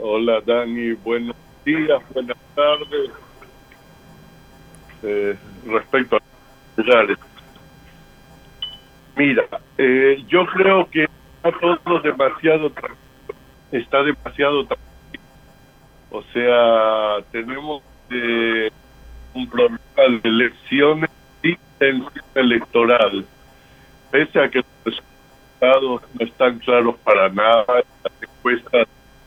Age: 60-79